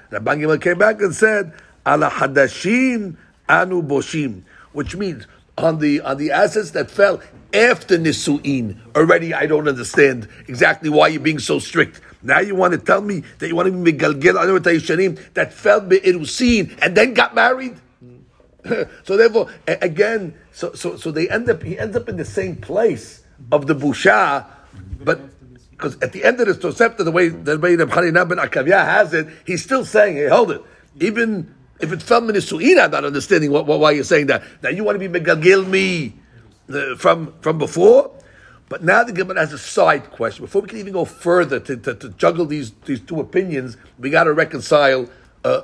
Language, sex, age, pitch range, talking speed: English, male, 50-69, 145-195 Hz, 185 wpm